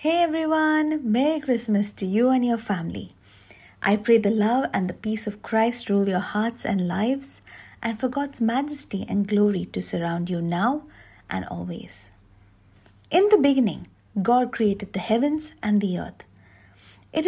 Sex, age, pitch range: female, 50-69, 175-240 Hz